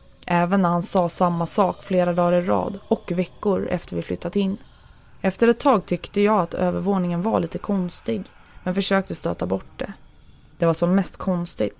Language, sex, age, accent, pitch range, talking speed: Swedish, female, 20-39, native, 165-195 Hz, 185 wpm